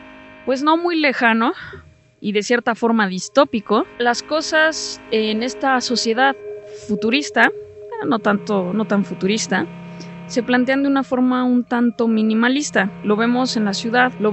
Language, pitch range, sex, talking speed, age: Spanish, 205-265 Hz, female, 140 wpm, 20-39